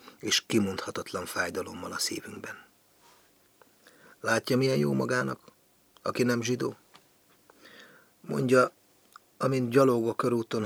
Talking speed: 95 wpm